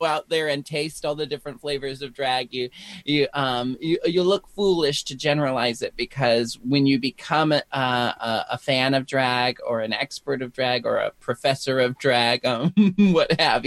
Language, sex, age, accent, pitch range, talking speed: English, male, 30-49, American, 120-145 Hz, 190 wpm